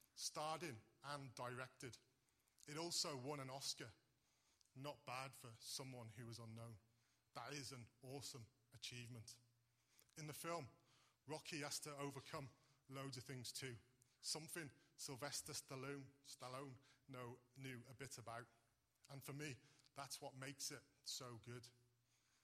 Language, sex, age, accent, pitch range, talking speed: English, male, 30-49, British, 125-145 Hz, 130 wpm